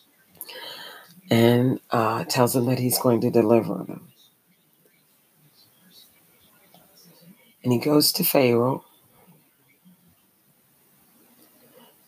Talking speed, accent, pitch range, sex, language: 75 wpm, American, 115-165 Hz, female, English